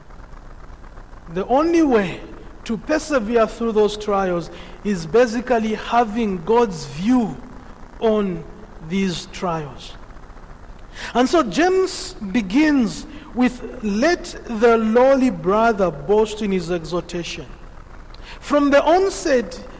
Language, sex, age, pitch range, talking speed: English, male, 50-69, 225-300 Hz, 95 wpm